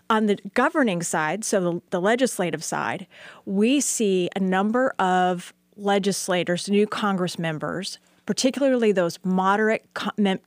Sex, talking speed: female, 125 wpm